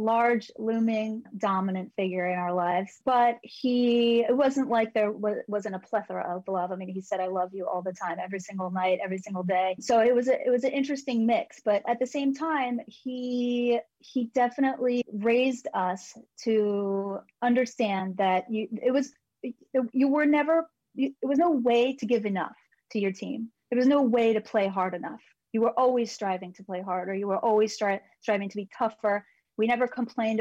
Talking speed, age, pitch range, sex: 185 wpm, 30-49, 195-240 Hz, female